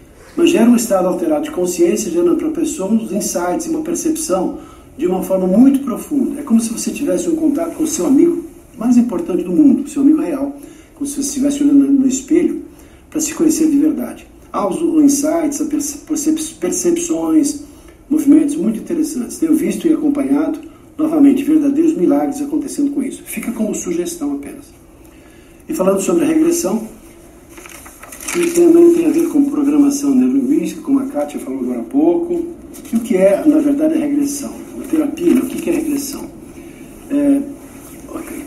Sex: male